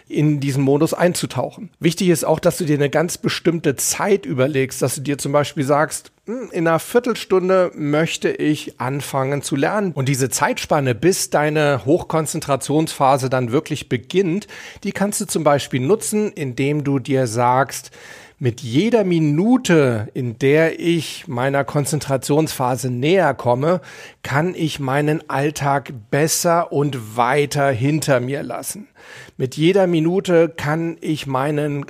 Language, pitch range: German, 140-175 Hz